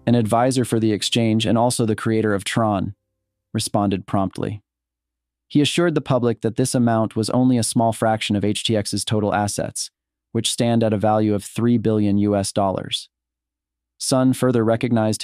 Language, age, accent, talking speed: English, 30-49, American, 165 wpm